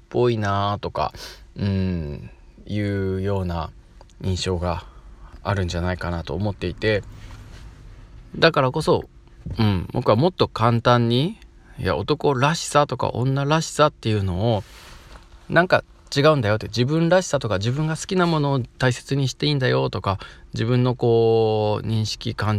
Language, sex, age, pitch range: Japanese, male, 20-39, 90-125 Hz